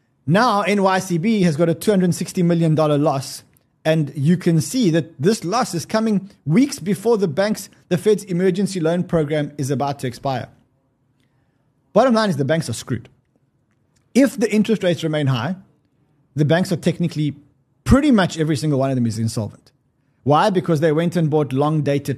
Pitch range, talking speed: 135-180 Hz, 170 wpm